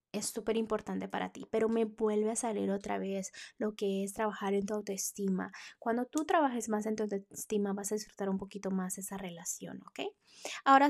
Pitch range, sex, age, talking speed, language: 195-225 Hz, female, 20-39, 200 wpm, Spanish